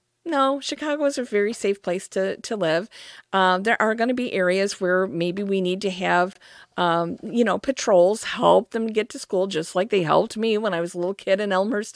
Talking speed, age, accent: 225 wpm, 50-69, American